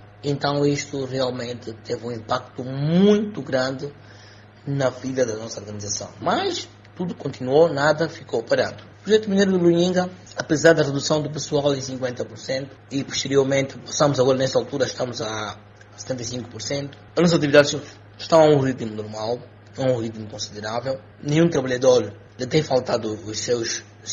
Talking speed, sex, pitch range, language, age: 150 wpm, male, 105-145 Hz, Portuguese, 20-39